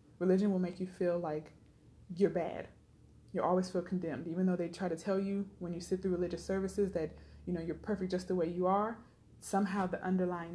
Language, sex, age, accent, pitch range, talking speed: English, female, 20-39, American, 170-190 Hz, 205 wpm